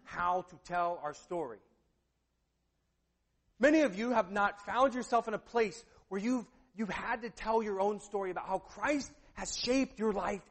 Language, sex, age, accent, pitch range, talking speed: English, male, 40-59, American, 175-245 Hz, 175 wpm